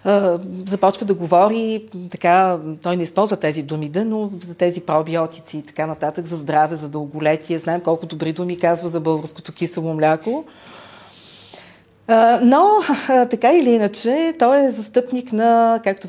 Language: Bulgarian